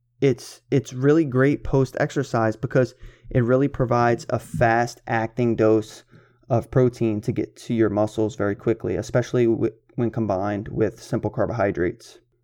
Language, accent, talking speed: English, American, 135 wpm